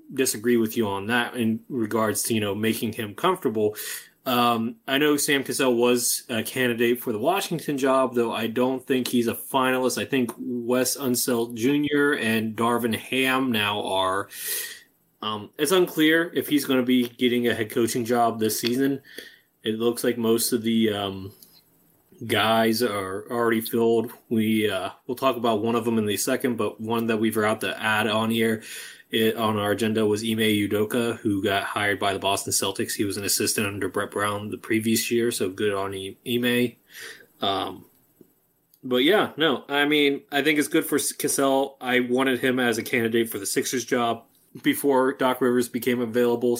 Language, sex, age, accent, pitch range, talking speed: English, male, 20-39, American, 110-130 Hz, 185 wpm